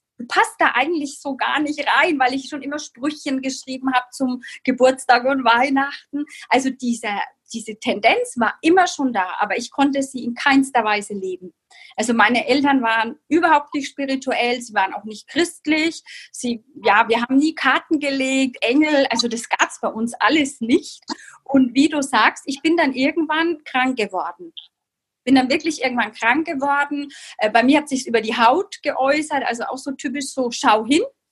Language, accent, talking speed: German, German, 180 wpm